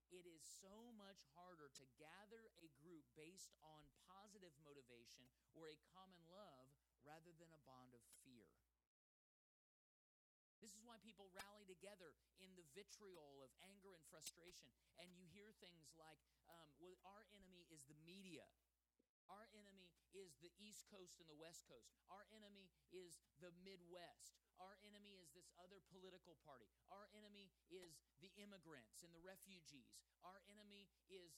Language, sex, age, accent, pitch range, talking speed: English, male, 30-49, American, 165-215 Hz, 155 wpm